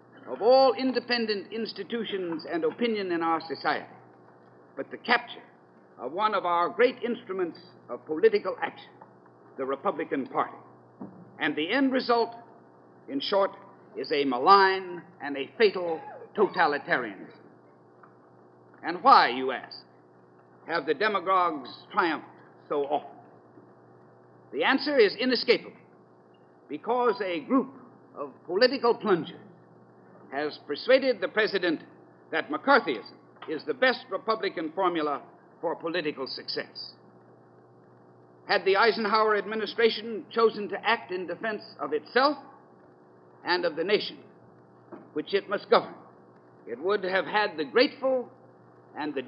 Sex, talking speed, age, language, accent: male, 120 wpm, 60-79, English, American